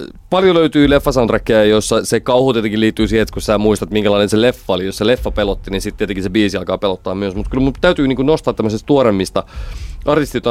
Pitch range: 90-115 Hz